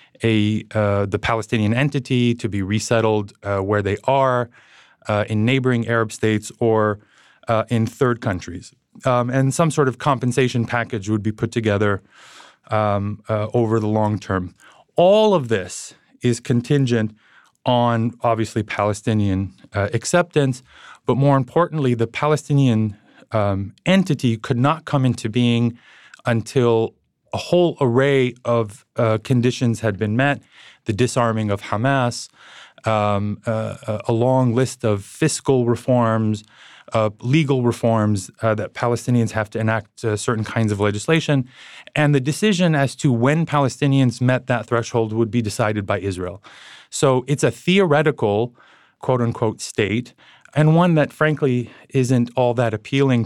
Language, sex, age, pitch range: English, male, 30-49, 110-135 Hz